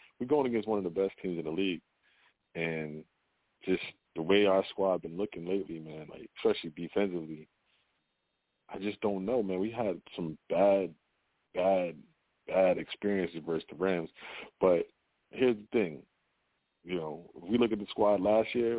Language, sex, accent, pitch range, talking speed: English, male, American, 95-115 Hz, 165 wpm